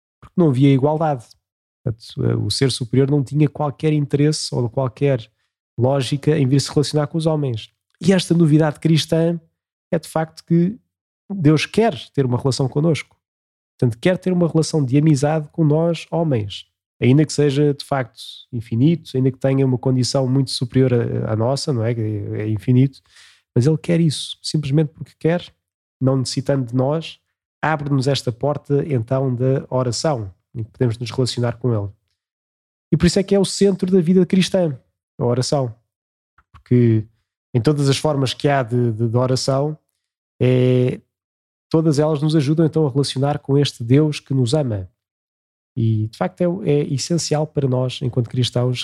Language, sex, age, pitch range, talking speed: Portuguese, male, 20-39, 120-155 Hz, 165 wpm